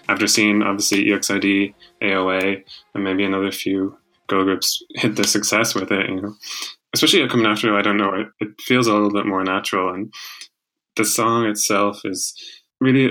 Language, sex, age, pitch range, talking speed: English, male, 20-39, 100-115 Hz, 185 wpm